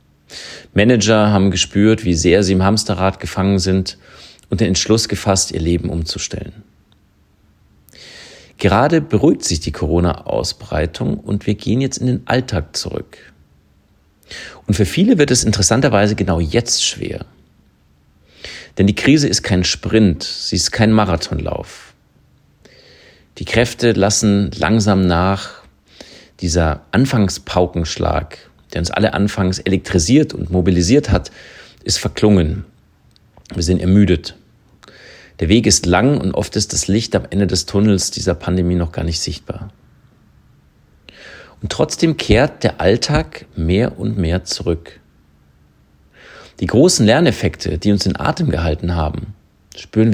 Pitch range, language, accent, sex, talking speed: 85-105 Hz, German, German, male, 130 wpm